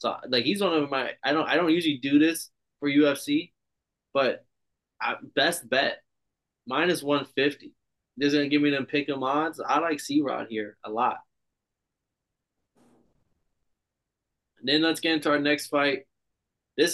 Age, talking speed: 20-39, 160 wpm